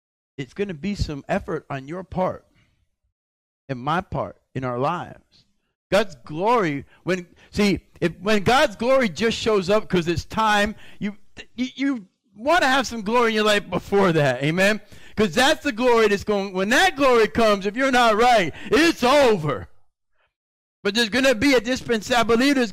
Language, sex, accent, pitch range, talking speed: English, male, American, 185-235 Hz, 180 wpm